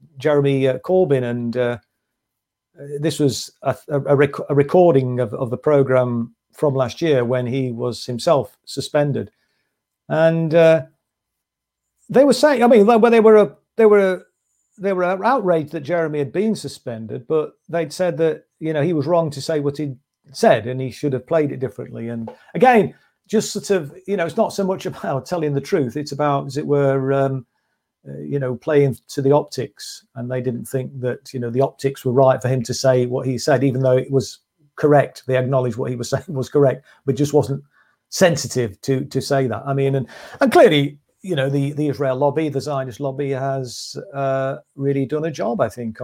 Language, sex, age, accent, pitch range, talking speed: English, male, 40-59, British, 125-155 Hz, 200 wpm